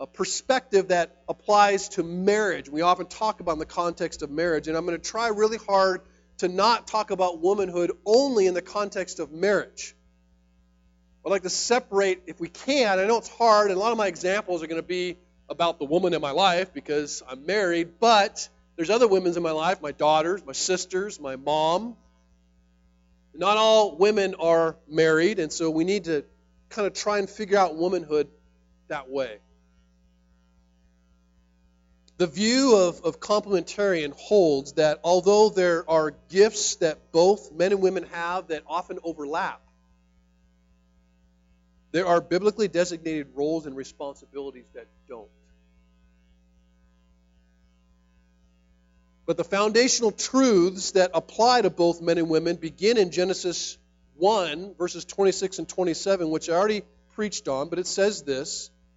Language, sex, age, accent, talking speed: English, male, 40-59, American, 155 wpm